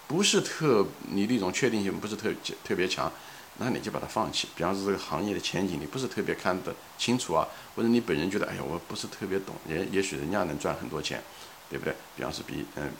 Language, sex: Chinese, male